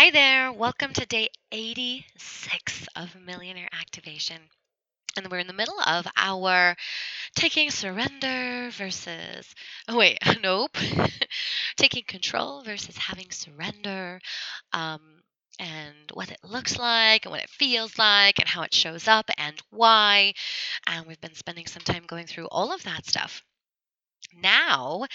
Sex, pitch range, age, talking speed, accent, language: female, 180-245 Hz, 20-39, 140 wpm, American, English